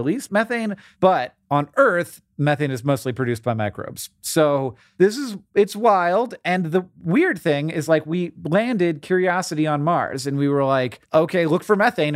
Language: English